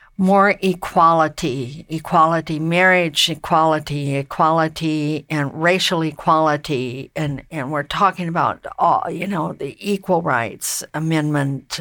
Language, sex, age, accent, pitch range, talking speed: English, female, 60-79, American, 160-200 Hz, 105 wpm